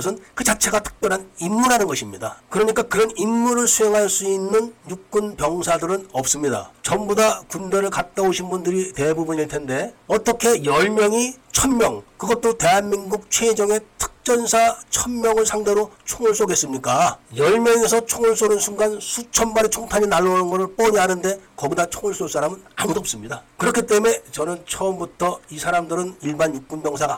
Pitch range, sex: 175-225 Hz, male